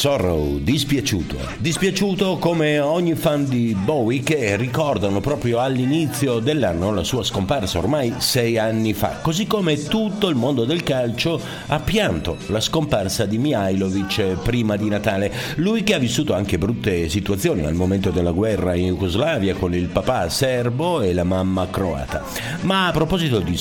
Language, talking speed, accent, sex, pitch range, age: Italian, 155 wpm, native, male, 100-155 Hz, 50-69